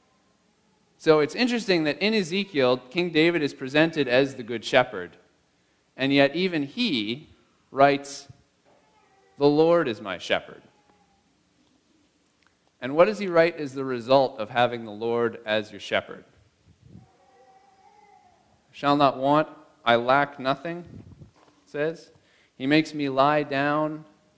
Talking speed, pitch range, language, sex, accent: 130 wpm, 110-150 Hz, English, male, American